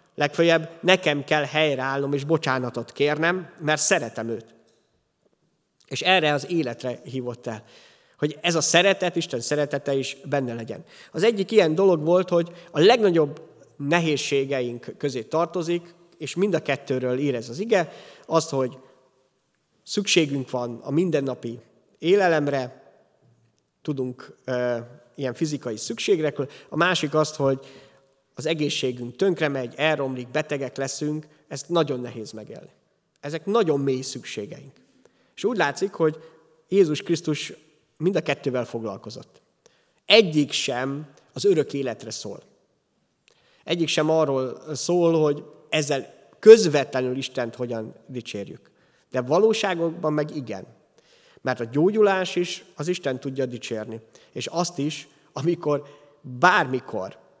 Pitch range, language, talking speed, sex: 130-165 Hz, Hungarian, 120 wpm, male